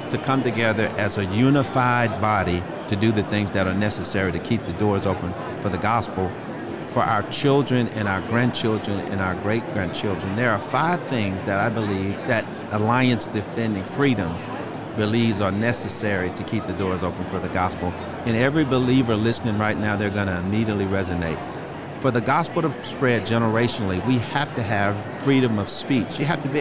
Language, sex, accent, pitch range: English, male, American, 105-135 Hz